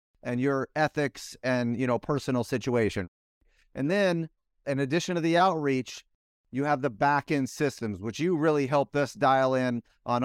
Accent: American